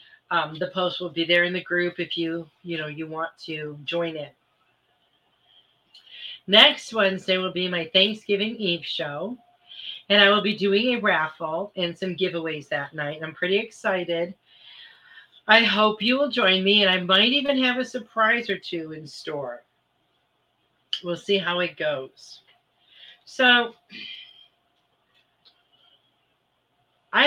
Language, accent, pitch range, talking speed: English, American, 165-215 Hz, 145 wpm